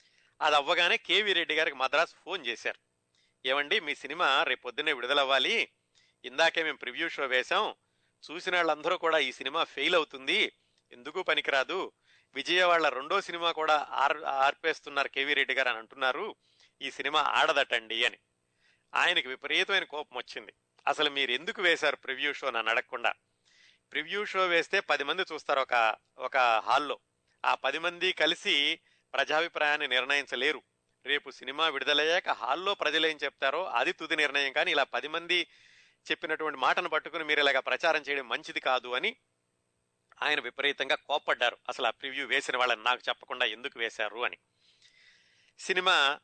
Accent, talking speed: native, 135 wpm